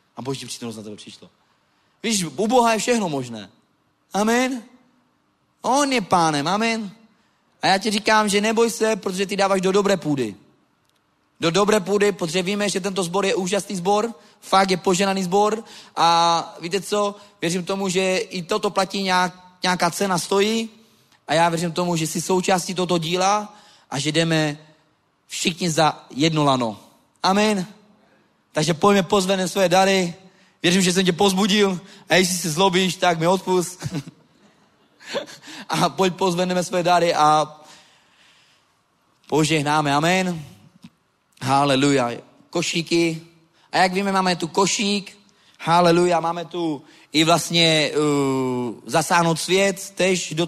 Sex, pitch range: male, 155-195 Hz